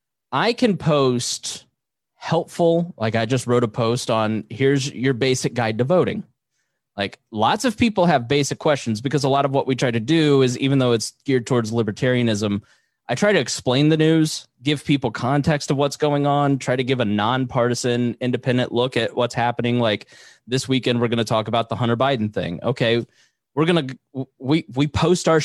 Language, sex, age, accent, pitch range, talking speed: English, male, 20-39, American, 120-145 Hz, 195 wpm